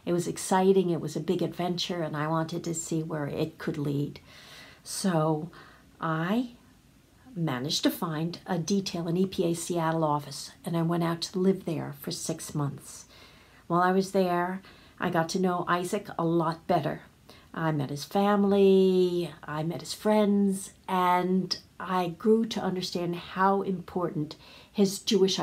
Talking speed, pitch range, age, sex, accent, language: 160 wpm, 160-195 Hz, 50-69, female, American, English